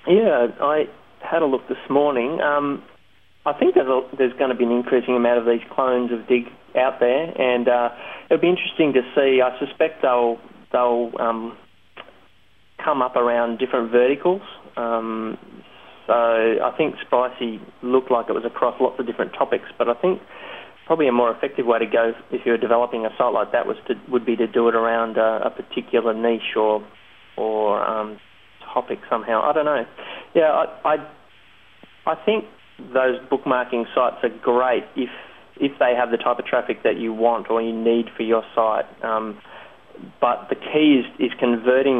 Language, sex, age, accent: English, male, 30-49, Australian